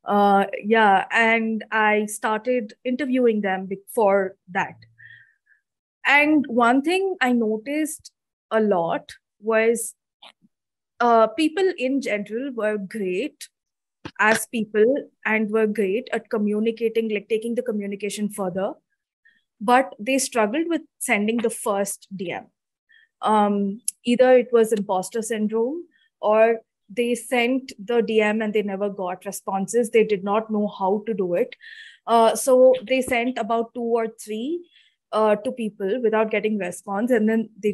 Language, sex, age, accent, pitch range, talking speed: English, female, 20-39, Indian, 205-245 Hz, 135 wpm